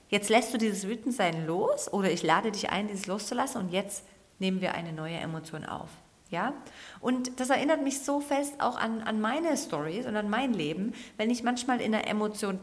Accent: German